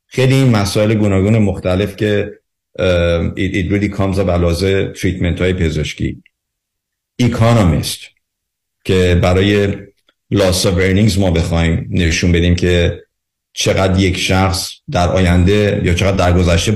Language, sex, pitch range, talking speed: Persian, male, 90-105 Hz, 110 wpm